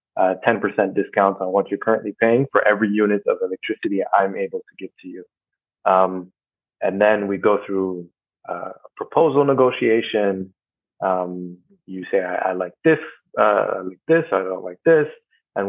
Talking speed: 170 wpm